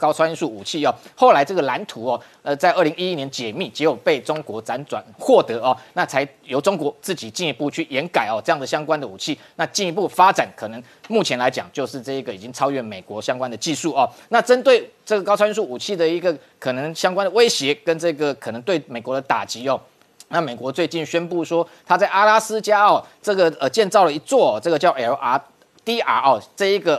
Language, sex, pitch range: Chinese, male, 140-190 Hz